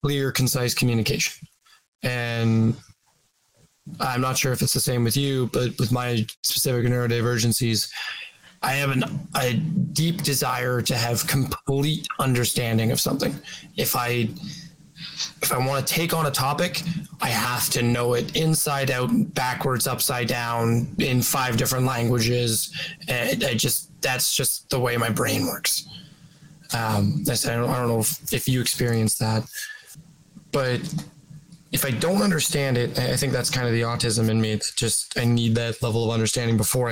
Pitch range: 115-150 Hz